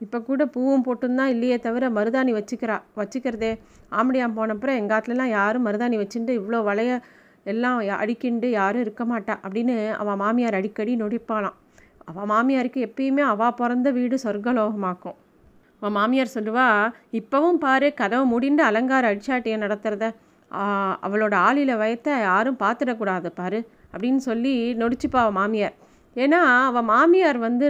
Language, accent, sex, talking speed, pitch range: Tamil, native, female, 130 wpm, 220-265 Hz